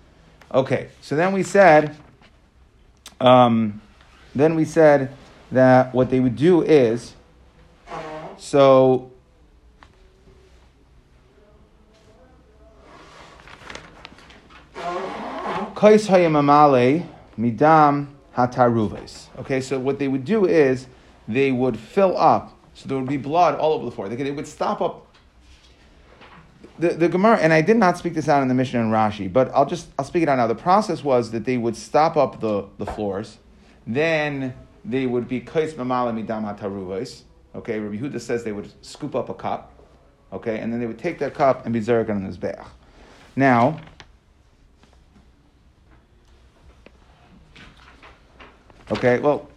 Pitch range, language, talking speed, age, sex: 110-150 Hz, English, 130 wpm, 30-49, male